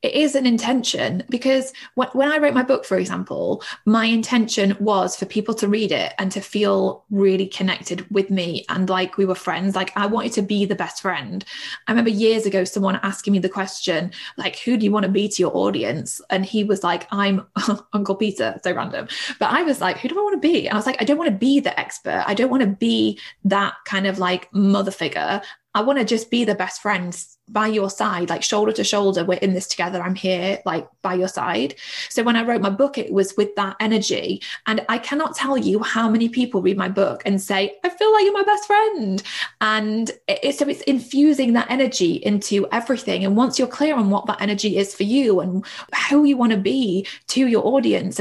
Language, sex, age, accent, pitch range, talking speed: English, female, 20-39, British, 195-250 Hz, 230 wpm